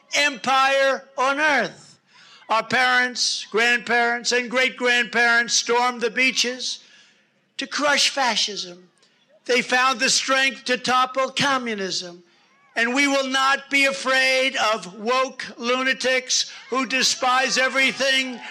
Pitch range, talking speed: 235-275 Hz, 105 wpm